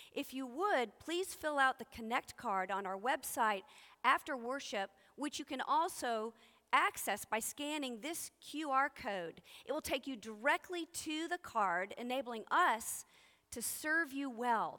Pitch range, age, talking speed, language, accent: 210-310 Hz, 40-59, 155 wpm, English, American